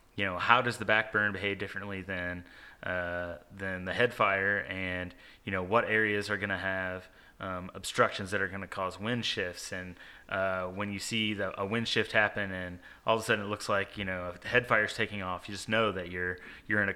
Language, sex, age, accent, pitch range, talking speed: English, male, 20-39, American, 95-110 Hz, 240 wpm